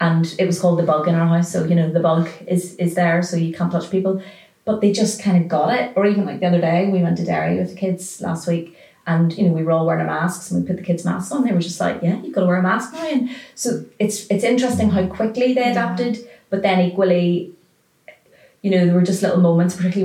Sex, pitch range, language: female, 175-210 Hz, English